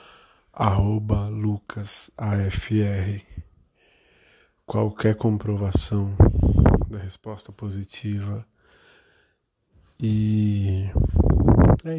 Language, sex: Portuguese, male